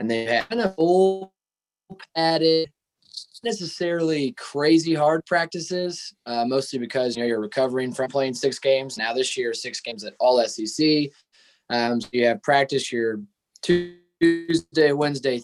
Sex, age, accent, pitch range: male, 20-39, American, 120-150 Hz